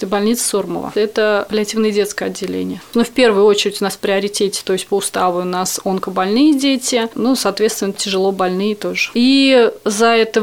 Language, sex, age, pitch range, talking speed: Russian, female, 30-49, 195-230 Hz, 175 wpm